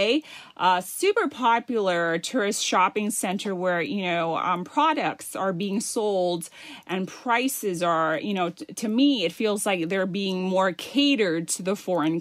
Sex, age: female, 30-49